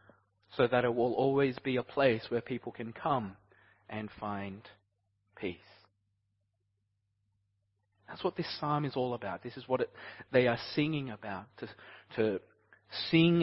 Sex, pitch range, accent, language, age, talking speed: male, 100-155 Hz, Australian, English, 30-49, 145 wpm